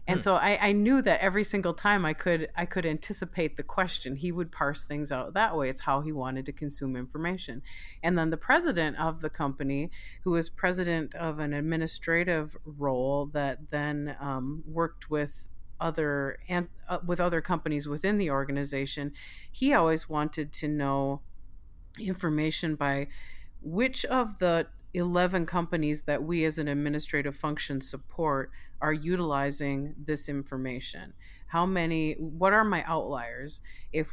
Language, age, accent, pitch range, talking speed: English, 40-59, American, 140-170 Hz, 155 wpm